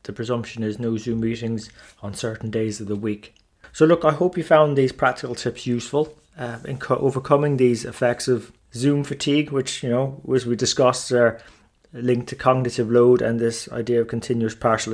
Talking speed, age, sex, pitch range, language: 185 wpm, 30-49, male, 115-130 Hz, English